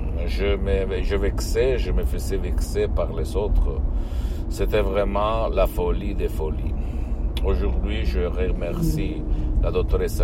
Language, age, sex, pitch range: Italian, 60-79, male, 70-90 Hz